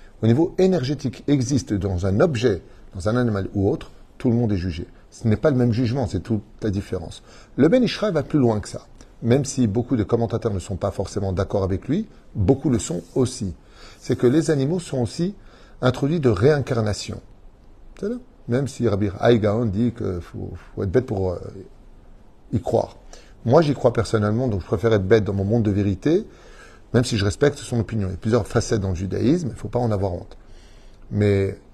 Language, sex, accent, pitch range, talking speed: French, male, French, 100-130 Hz, 205 wpm